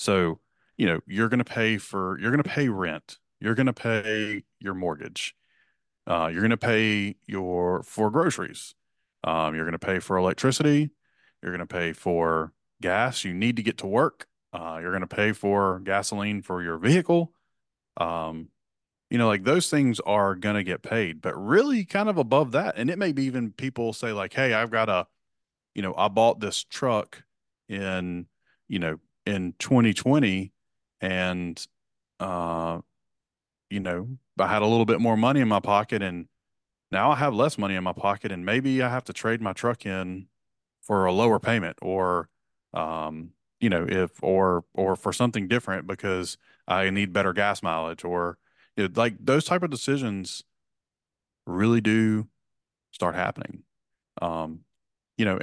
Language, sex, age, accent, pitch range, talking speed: English, male, 30-49, American, 90-115 Hz, 175 wpm